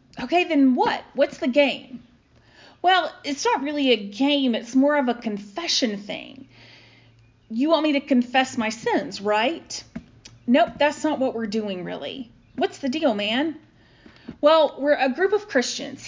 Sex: female